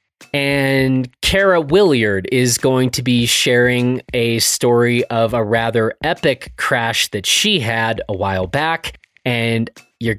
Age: 30-49